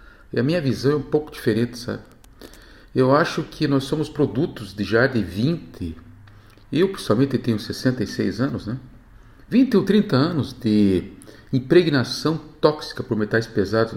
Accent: Brazilian